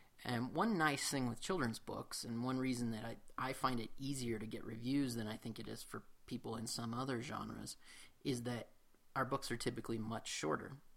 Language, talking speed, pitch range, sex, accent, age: English, 210 wpm, 115-135 Hz, male, American, 30-49